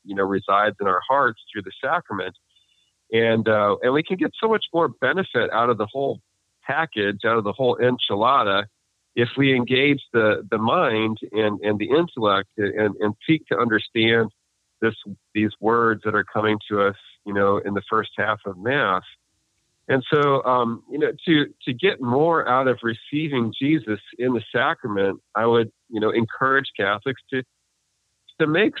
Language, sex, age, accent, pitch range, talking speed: English, male, 40-59, American, 100-120 Hz, 175 wpm